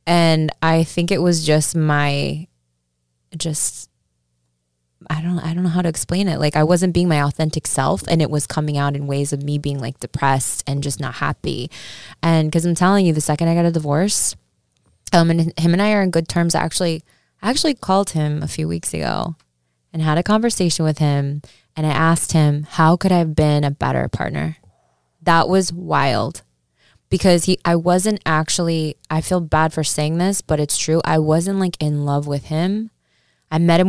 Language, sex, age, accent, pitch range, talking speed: English, female, 20-39, American, 140-175 Hz, 205 wpm